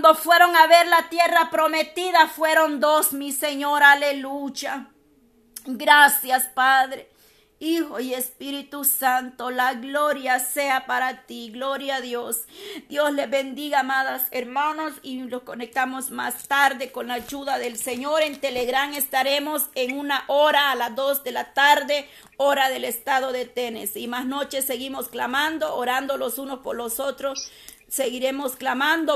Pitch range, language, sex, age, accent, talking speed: 265-310 Hz, Spanish, female, 40-59, American, 145 wpm